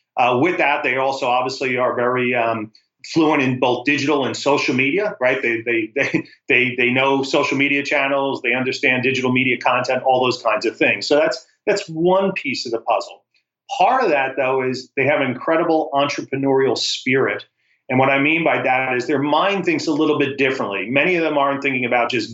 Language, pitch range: English, 125-150 Hz